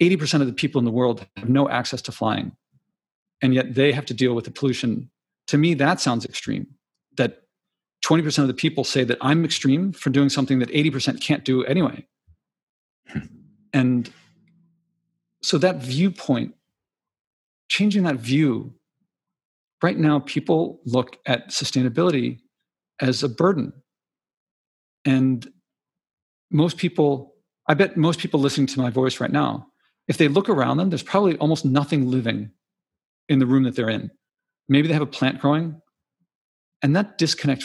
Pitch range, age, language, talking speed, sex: 130-170 Hz, 40-59, Italian, 155 wpm, male